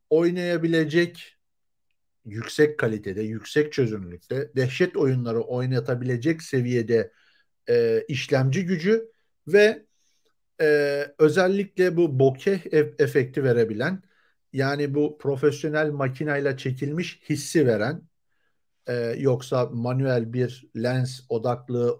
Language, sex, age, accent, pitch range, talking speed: Turkish, male, 50-69, native, 125-175 Hz, 90 wpm